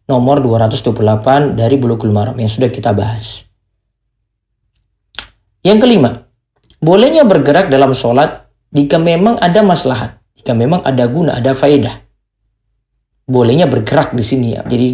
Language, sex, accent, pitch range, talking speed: Indonesian, male, native, 115-155 Hz, 125 wpm